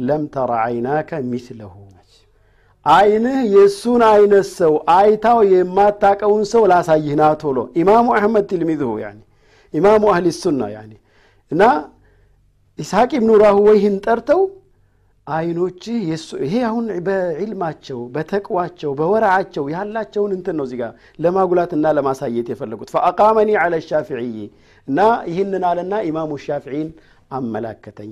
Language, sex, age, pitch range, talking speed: Amharic, male, 50-69, 120-195 Hz, 110 wpm